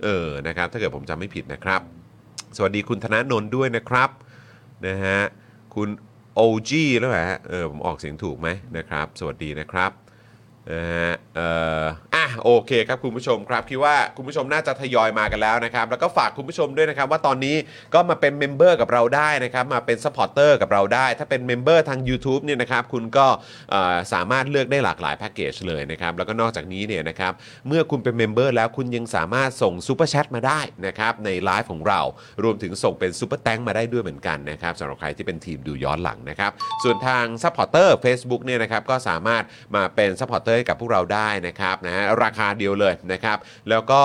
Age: 30-49